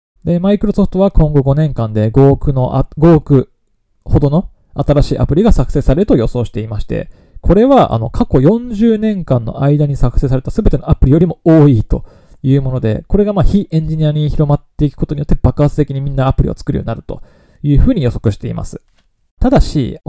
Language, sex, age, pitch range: Japanese, male, 20-39, 125-170 Hz